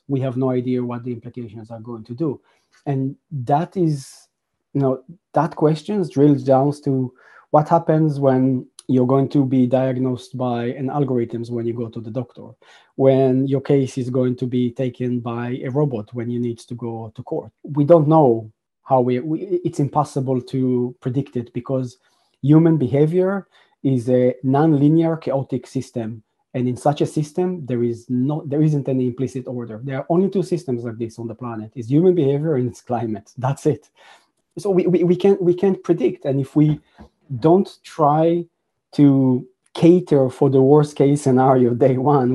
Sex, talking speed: male, 180 wpm